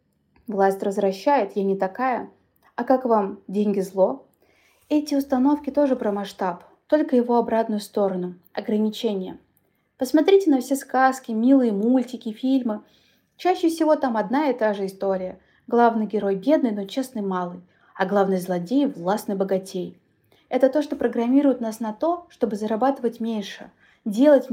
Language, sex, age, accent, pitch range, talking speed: Russian, female, 20-39, native, 205-260 Hz, 145 wpm